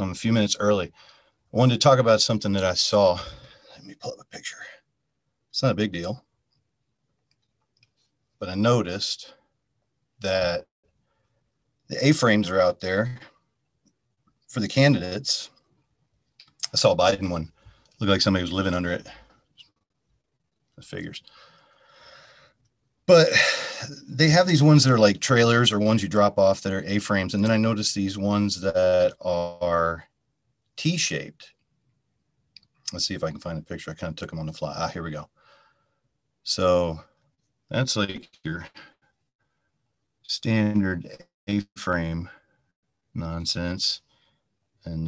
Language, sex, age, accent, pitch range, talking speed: English, male, 40-59, American, 90-125 Hz, 140 wpm